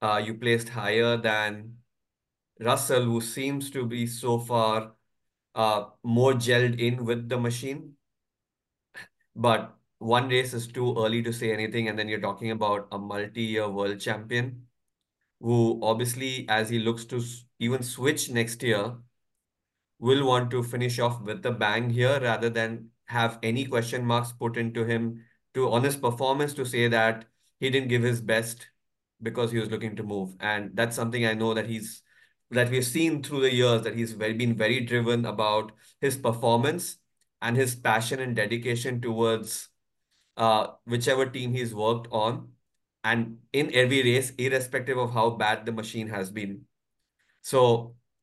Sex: male